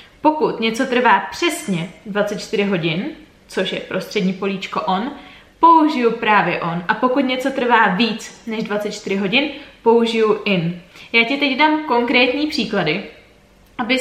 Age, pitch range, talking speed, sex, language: 20-39, 200-245 Hz, 135 wpm, female, Czech